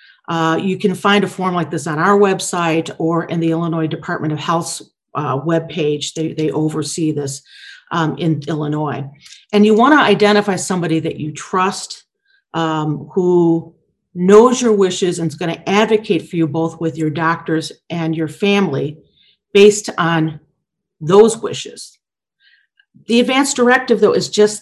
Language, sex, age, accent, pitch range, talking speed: English, female, 40-59, American, 165-210 Hz, 155 wpm